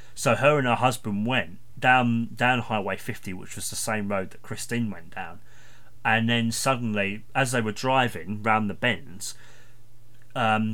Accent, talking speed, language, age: British, 170 wpm, English, 30-49